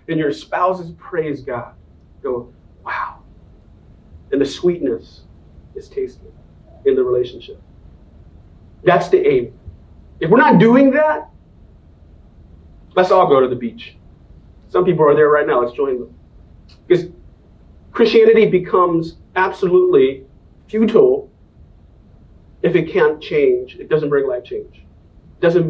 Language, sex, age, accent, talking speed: English, male, 40-59, American, 125 wpm